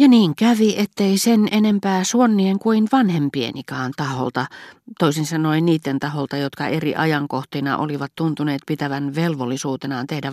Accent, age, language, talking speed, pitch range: native, 40-59, Finnish, 130 wpm, 125-175 Hz